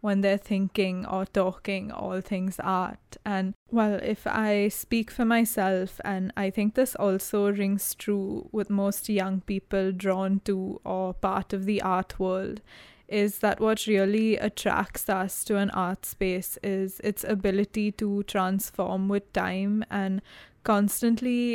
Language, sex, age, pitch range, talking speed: English, female, 20-39, 190-210 Hz, 150 wpm